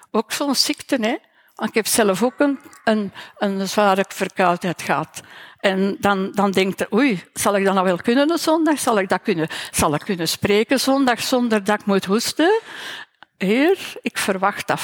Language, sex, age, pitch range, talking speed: Dutch, female, 60-79, 195-265 Hz, 195 wpm